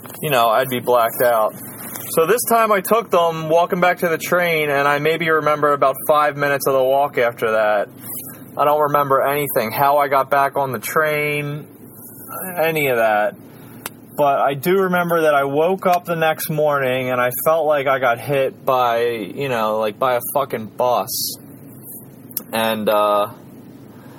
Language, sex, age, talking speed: English, male, 20-39, 175 wpm